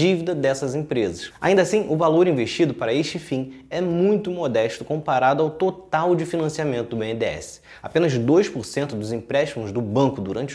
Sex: male